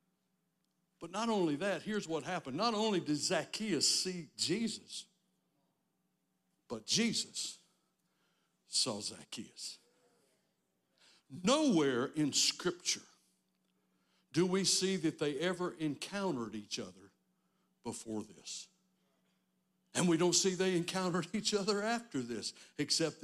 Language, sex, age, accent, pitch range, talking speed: English, male, 60-79, American, 145-220 Hz, 110 wpm